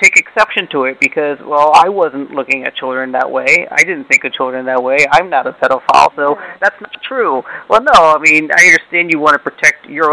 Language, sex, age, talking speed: English, male, 30-49, 230 wpm